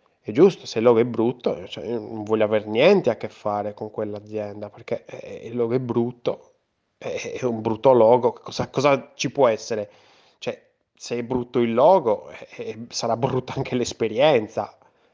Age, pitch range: 20-39, 110-150 Hz